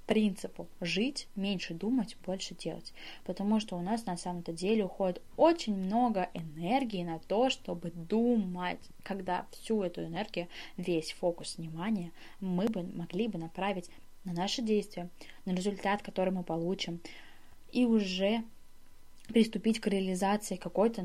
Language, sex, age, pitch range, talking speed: Russian, female, 20-39, 185-225 Hz, 135 wpm